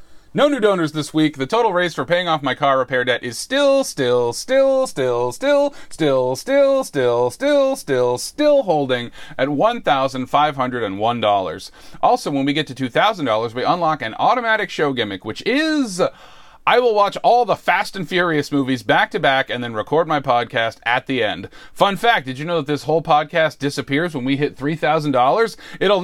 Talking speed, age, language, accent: 175 wpm, 30-49, English, American